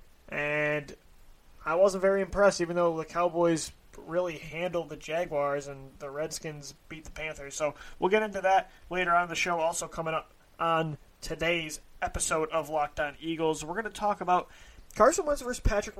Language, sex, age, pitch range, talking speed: English, male, 20-39, 150-175 Hz, 180 wpm